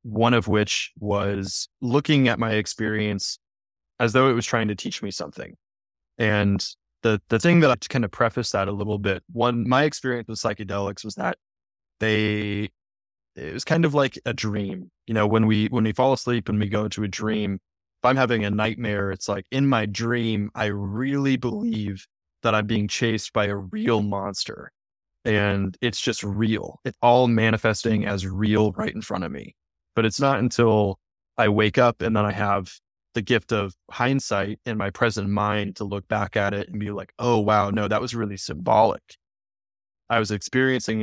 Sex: male